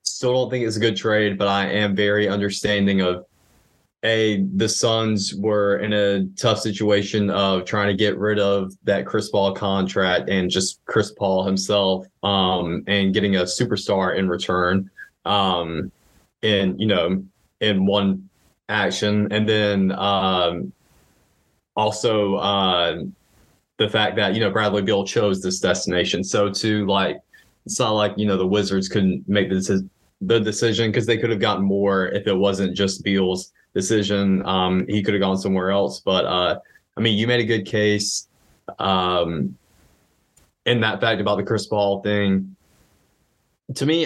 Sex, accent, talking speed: male, American, 160 wpm